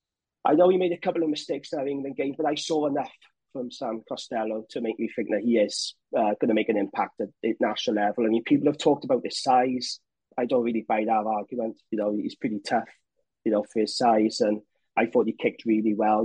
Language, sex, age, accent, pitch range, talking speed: English, male, 30-49, British, 110-160 Hz, 250 wpm